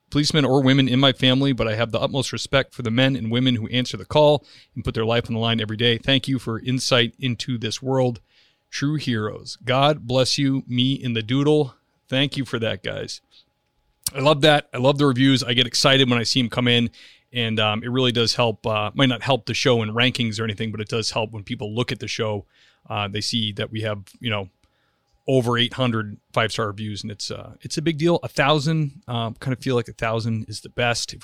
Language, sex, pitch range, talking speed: English, male, 115-135 Hz, 240 wpm